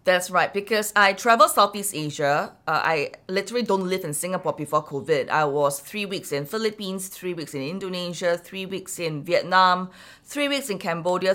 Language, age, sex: English, 20-39, female